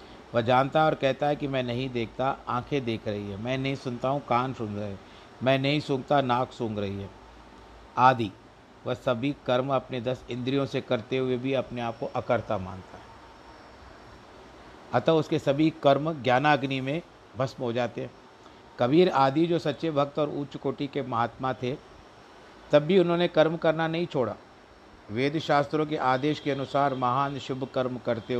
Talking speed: 180 wpm